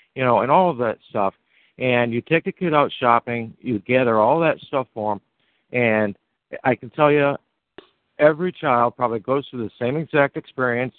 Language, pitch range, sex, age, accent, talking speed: English, 105-135 Hz, male, 60-79, American, 190 wpm